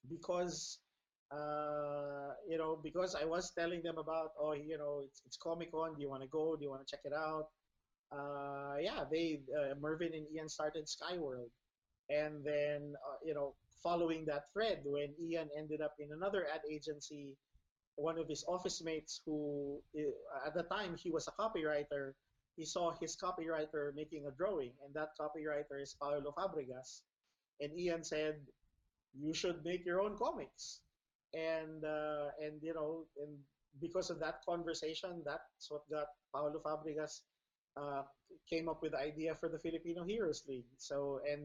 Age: 20-39